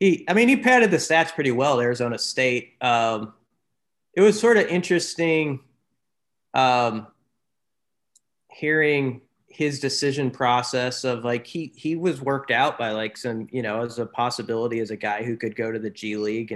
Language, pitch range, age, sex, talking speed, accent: English, 115-135 Hz, 30-49, male, 170 wpm, American